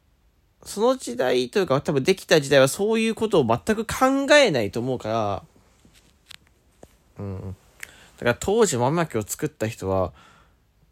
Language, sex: Japanese, male